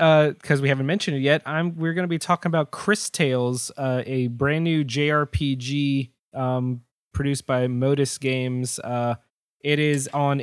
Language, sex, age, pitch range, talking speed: English, male, 20-39, 125-150 Hz, 175 wpm